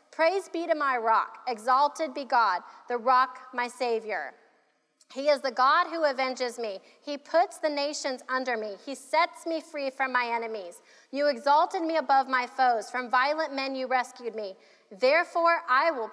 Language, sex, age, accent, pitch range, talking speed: English, female, 30-49, American, 245-305 Hz, 175 wpm